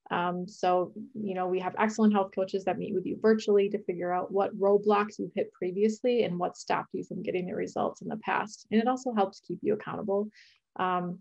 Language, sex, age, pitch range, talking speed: English, female, 20-39, 185-205 Hz, 220 wpm